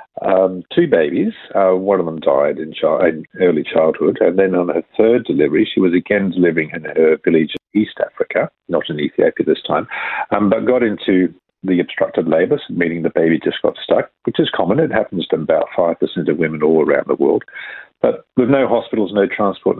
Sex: male